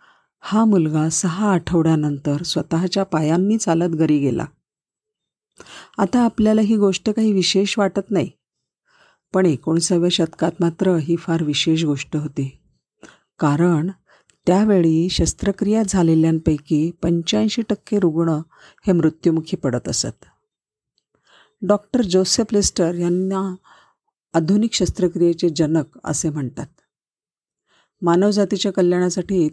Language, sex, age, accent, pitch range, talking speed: Marathi, female, 50-69, native, 160-190 Hz, 100 wpm